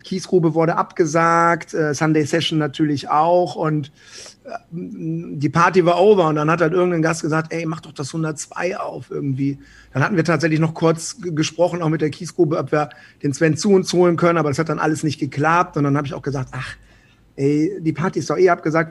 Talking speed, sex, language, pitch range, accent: 210 wpm, male, German, 150-175 Hz, German